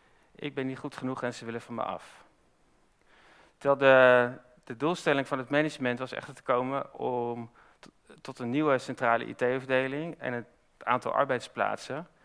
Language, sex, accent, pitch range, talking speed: Dutch, male, Dutch, 120-140 Hz, 160 wpm